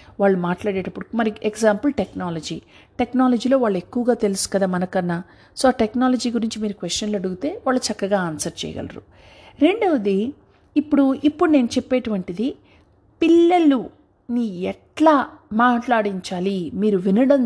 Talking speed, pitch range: 105 wpm, 200-275 Hz